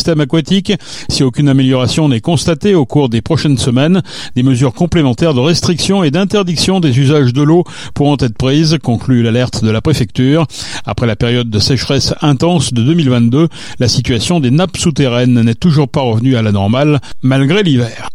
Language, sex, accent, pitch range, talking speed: French, male, French, 125-165 Hz, 170 wpm